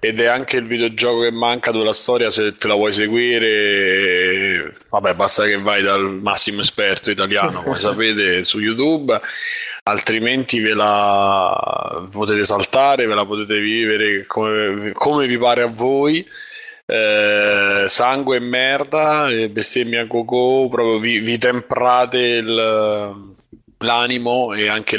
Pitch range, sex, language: 105-125 Hz, male, Italian